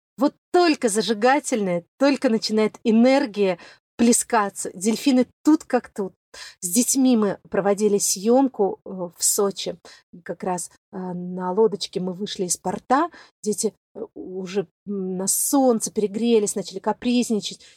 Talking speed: 110 wpm